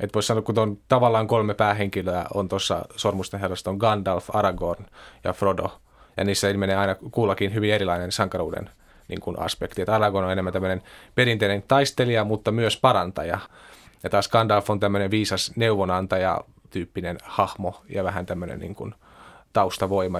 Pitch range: 95-110 Hz